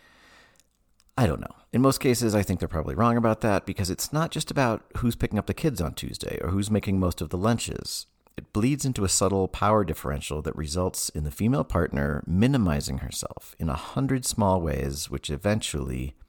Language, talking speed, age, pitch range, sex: English, 200 wpm, 40-59, 70-100 Hz, male